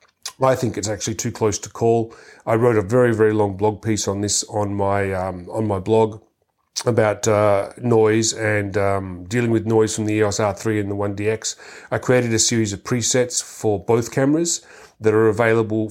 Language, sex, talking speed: English, male, 190 wpm